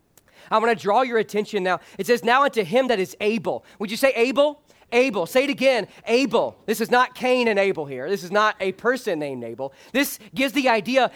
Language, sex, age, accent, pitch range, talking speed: English, male, 40-59, American, 185-245 Hz, 225 wpm